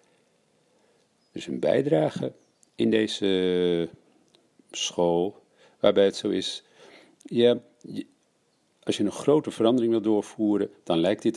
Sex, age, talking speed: male, 50-69, 105 wpm